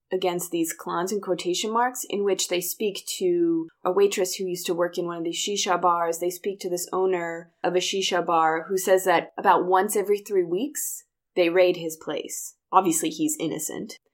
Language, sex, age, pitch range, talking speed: English, female, 20-39, 175-230 Hz, 200 wpm